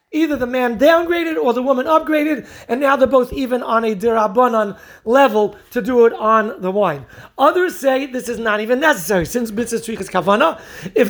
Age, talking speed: 40-59, 190 wpm